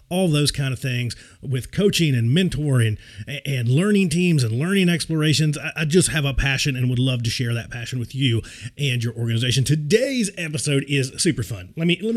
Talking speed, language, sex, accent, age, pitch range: 195 wpm, English, male, American, 30-49, 120-155 Hz